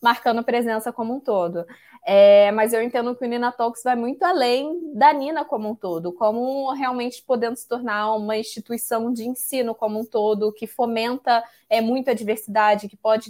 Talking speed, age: 175 wpm, 20-39